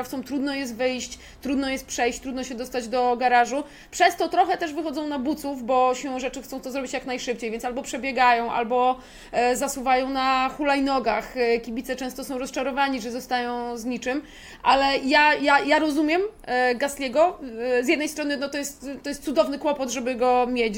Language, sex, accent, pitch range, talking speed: Polish, female, native, 245-280 Hz, 175 wpm